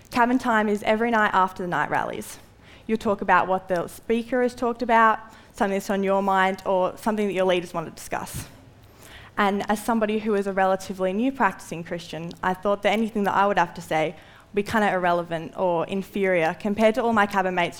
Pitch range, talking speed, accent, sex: 170-215 Hz, 220 wpm, Australian, female